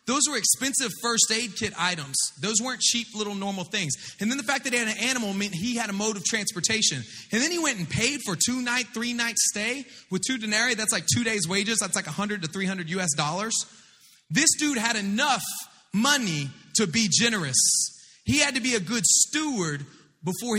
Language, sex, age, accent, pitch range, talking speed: English, male, 30-49, American, 170-230 Hz, 210 wpm